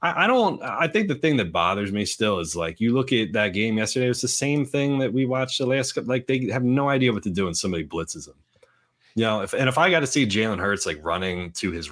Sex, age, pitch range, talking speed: male, 30-49, 90-130 Hz, 275 wpm